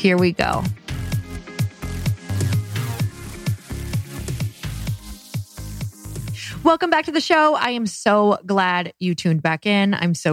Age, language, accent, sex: 30-49, English, American, female